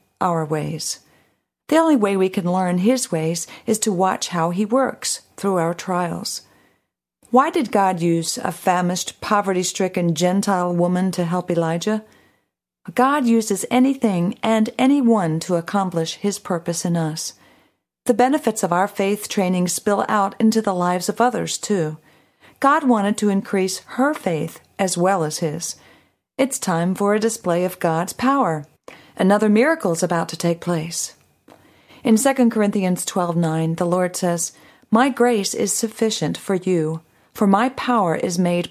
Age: 50-69